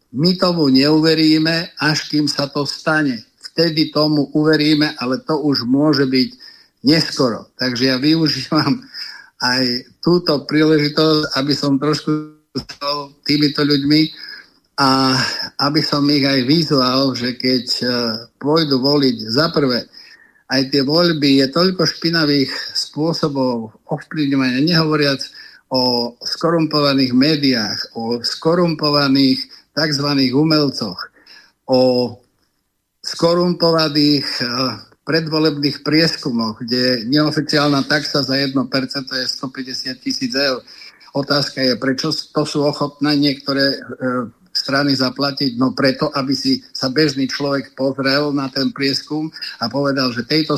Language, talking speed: Slovak, 110 wpm